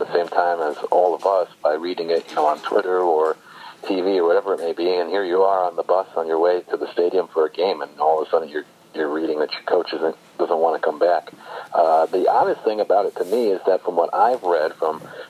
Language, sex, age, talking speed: English, male, 50-69, 270 wpm